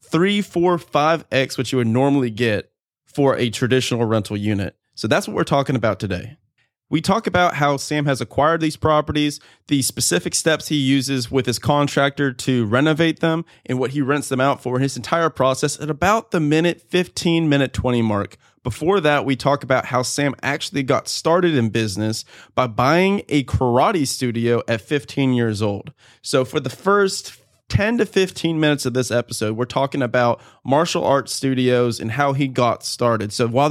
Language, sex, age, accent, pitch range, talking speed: English, male, 20-39, American, 120-150 Hz, 185 wpm